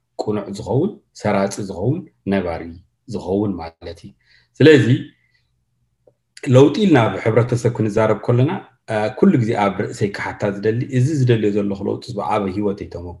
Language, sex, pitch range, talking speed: English, male, 100-120 Hz, 125 wpm